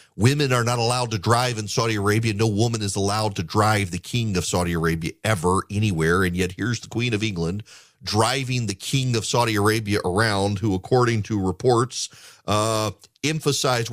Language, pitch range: English, 105-125 Hz